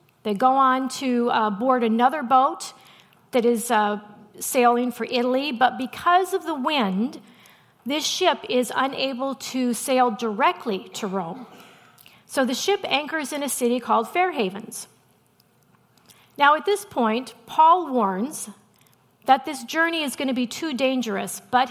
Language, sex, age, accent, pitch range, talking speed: English, female, 50-69, American, 225-280 Hz, 145 wpm